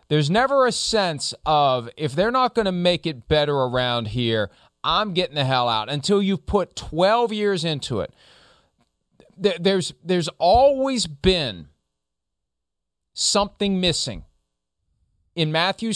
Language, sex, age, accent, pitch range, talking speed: English, male, 40-59, American, 130-180 Hz, 130 wpm